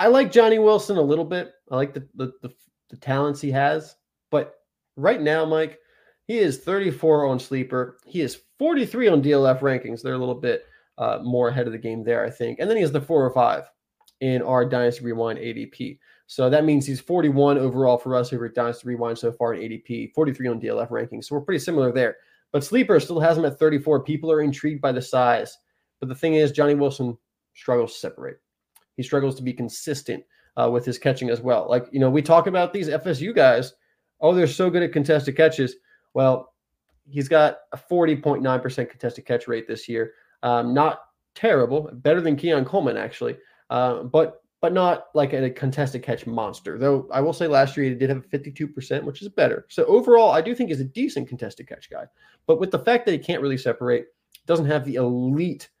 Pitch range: 125-160 Hz